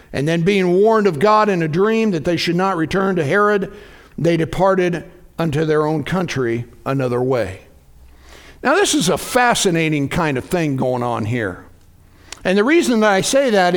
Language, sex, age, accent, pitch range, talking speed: English, male, 60-79, American, 175-230 Hz, 185 wpm